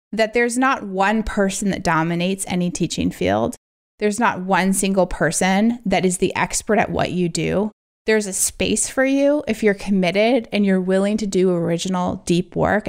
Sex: female